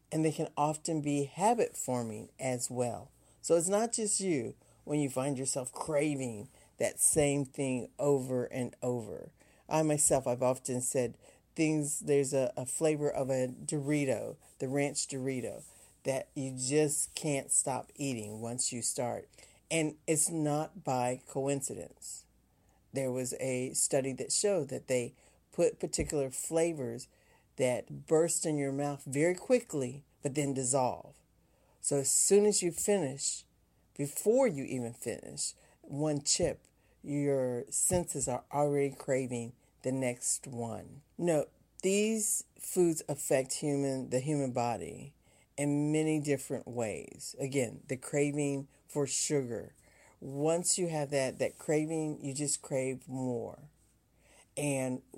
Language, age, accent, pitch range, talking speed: English, 50-69, American, 130-150 Hz, 135 wpm